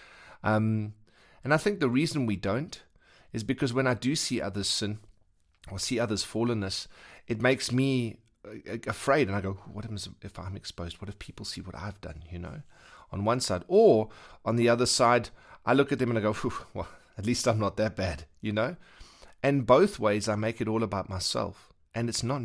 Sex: male